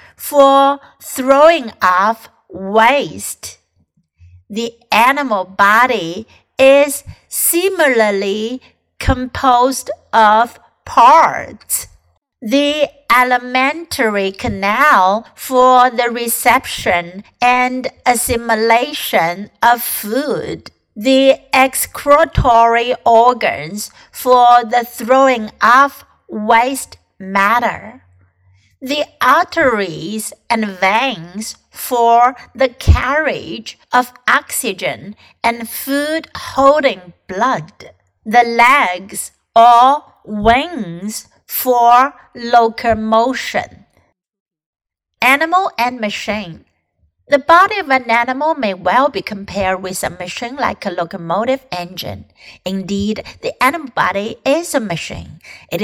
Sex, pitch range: female, 205-260 Hz